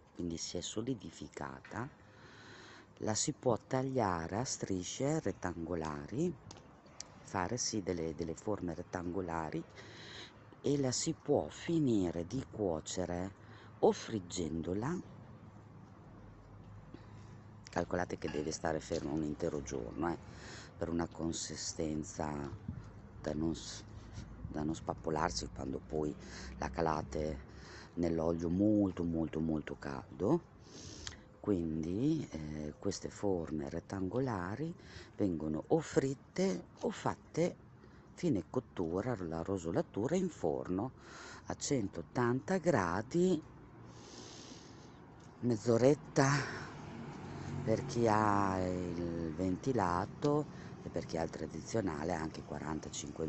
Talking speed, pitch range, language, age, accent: 95 wpm, 80-115 Hz, Italian, 40-59, native